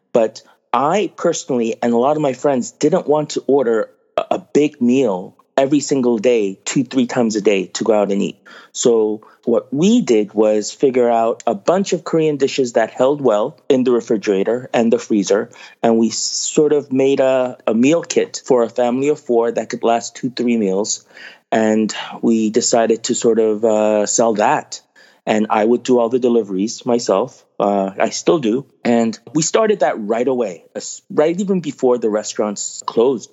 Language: English